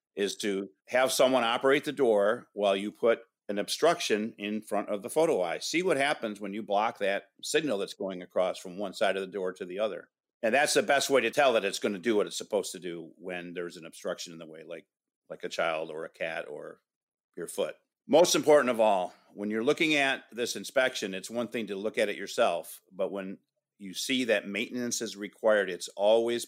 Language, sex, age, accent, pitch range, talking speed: English, male, 50-69, American, 95-120 Hz, 225 wpm